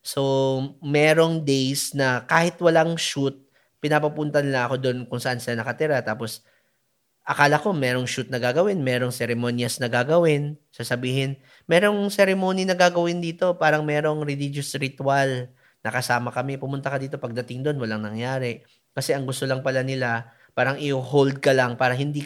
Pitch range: 125-155 Hz